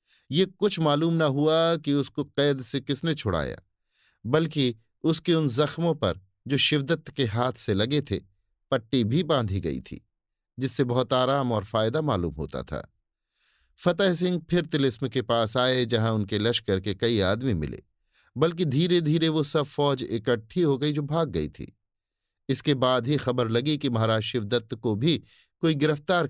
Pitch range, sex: 105-140 Hz, male